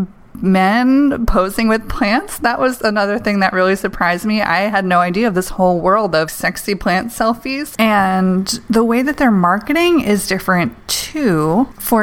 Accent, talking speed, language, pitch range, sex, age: American, 170 wpm, English, 180-225 Hz, female, 20-39